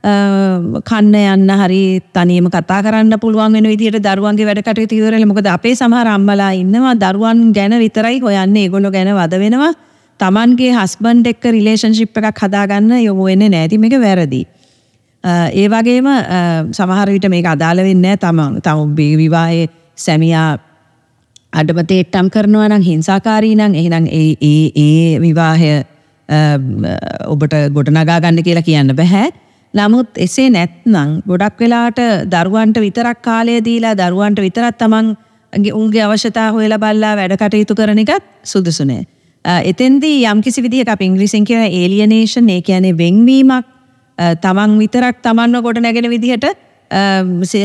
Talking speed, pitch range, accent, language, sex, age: 110 wpm, 170-220 Hz, Indian, English, female, 30-49